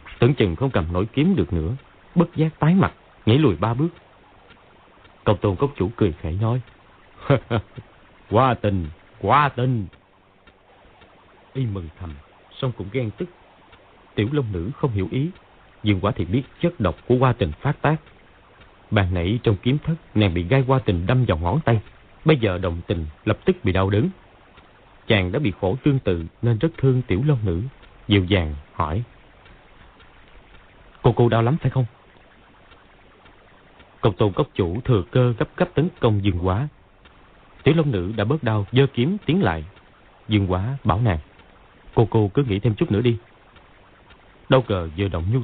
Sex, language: male, Vietnamese